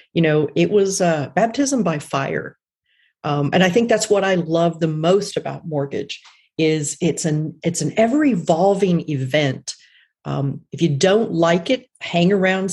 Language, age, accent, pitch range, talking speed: English, 50-69, American, 160-200 Hz, 170 wpm